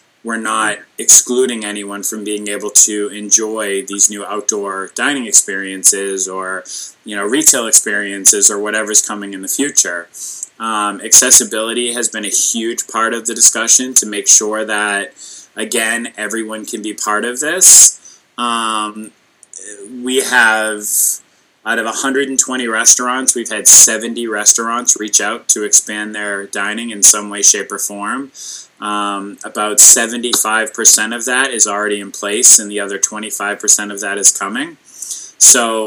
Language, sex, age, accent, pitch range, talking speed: English, male, 20-39, American, 105-115 Hz, 145 wpm